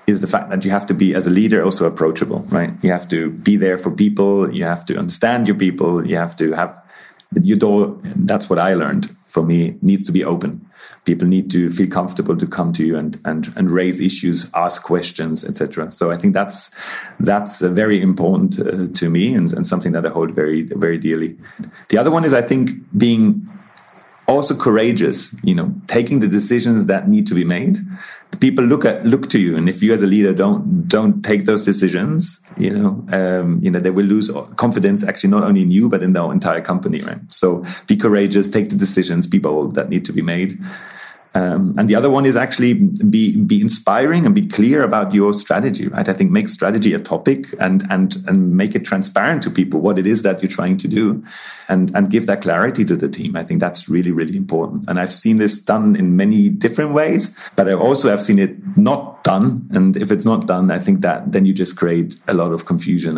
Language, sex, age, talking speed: English, male, 30-49, 225 wpm